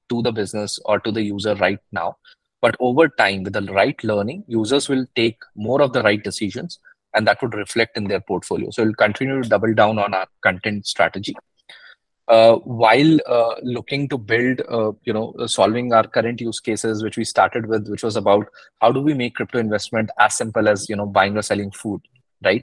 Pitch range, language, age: 105-125 Hz, English, 20-39